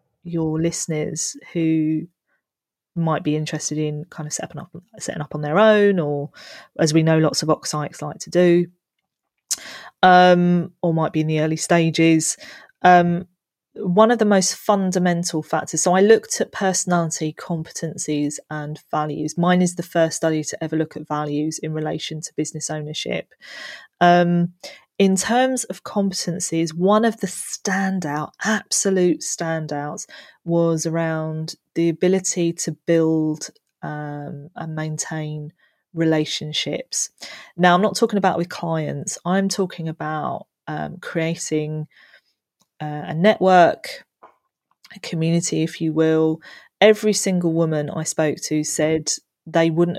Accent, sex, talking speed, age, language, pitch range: British, female, 135 wpm, 20-39, English, 155-180 Hz